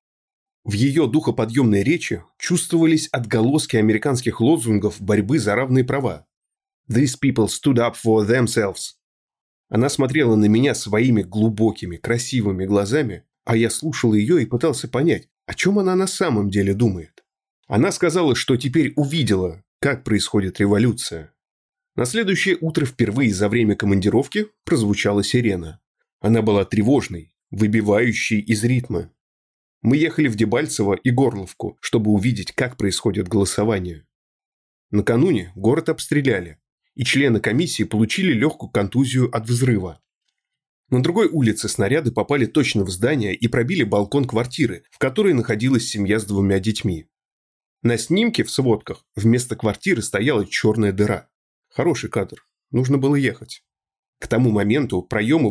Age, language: 20-39, Russian